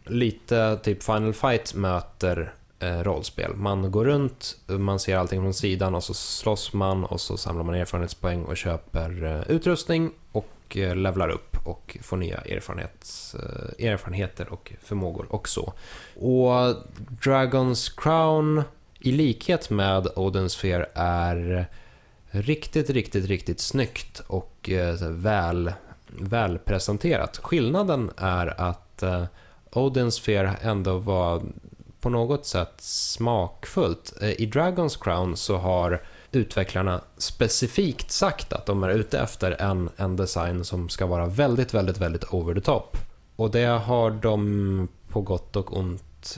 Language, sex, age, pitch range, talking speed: Swedish, male, 20-39, 90-115 Hz, 135 wpm